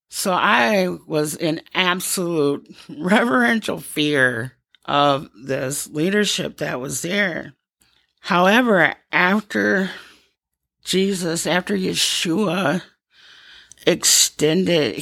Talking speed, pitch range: 75 wpm, 150-190 Hz